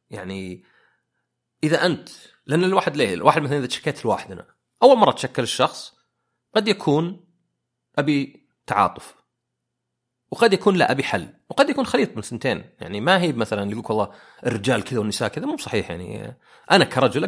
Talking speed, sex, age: 165 wpm, male, 30-49